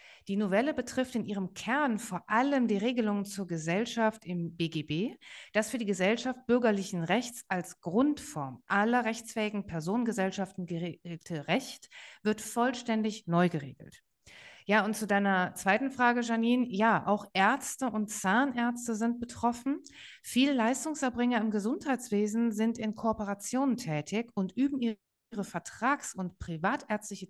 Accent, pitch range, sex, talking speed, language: German, 190-245 Hz, female, 130 wpm, German